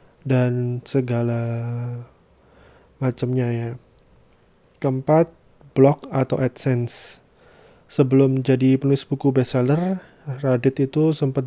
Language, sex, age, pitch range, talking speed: Indonesian, male, 20-39, 125-145 Hz, 85 wpm